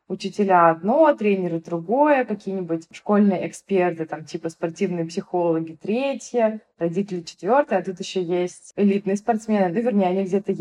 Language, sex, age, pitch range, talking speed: Russian, female, 20-39, 175-220 Hz, 135 wpm